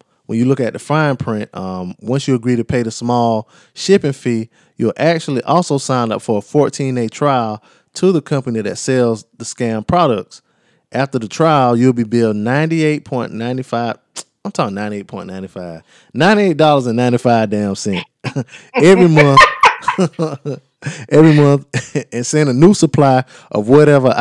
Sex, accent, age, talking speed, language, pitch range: male, American, 20-39, 145 wpm, English, 110-140 Hz